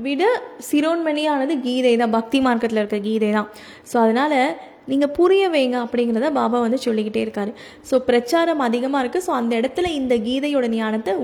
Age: 20-39